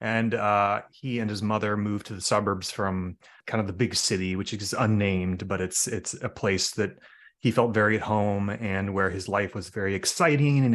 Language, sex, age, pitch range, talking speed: English, male, 30-49, 100-120 Hz, 210 wpm